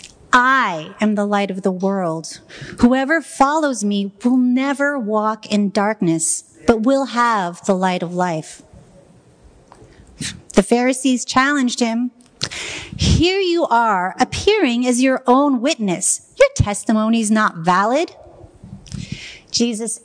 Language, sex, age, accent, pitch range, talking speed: English, female, 40-59, American, 195-265 Hz, 120 wpm